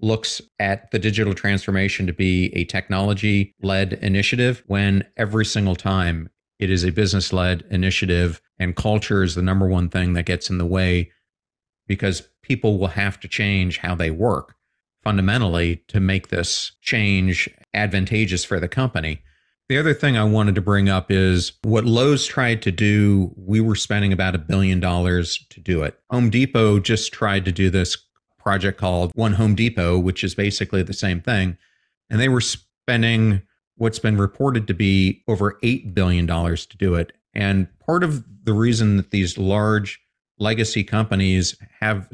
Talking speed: 170 wpm